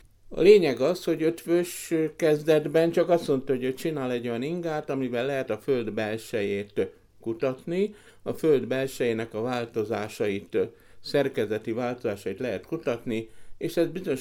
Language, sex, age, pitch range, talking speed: Hungarian, male, 60-79, 115-155 Hz, 135 wpm